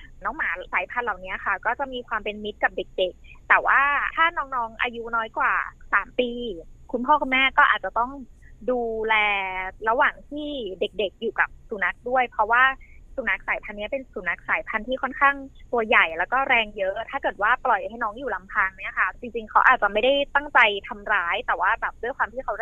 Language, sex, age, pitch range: Thai, female, 20-39, 200-260 Hz